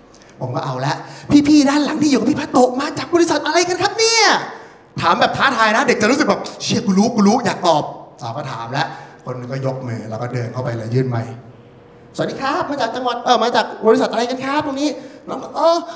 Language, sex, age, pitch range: Thai, male, 30-49, 230-380 Hz